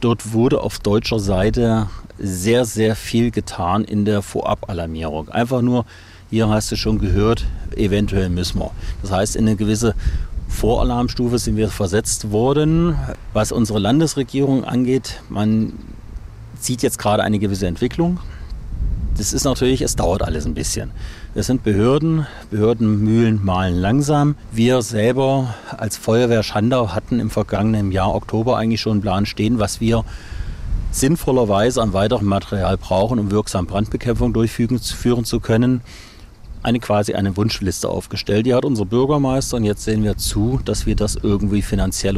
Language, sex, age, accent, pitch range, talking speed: German, male, 40-59, German, 100-115 Hz, 150 wpm